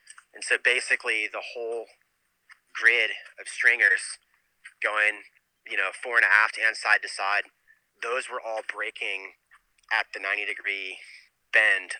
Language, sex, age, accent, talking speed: English, male, 30-49, American, 140 wpm